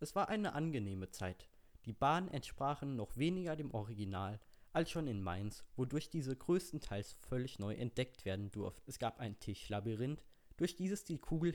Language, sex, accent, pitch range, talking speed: German, male, German, 105-145 Hz, 165 wpm